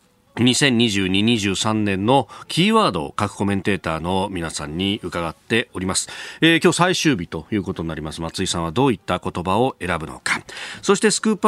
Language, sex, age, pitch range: Japanese, male, 40-59, 105-155 Hz